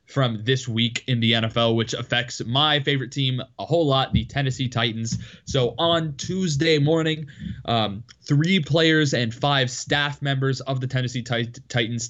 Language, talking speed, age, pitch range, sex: English, 160 wpm, 20-39, 115-140 Hz, male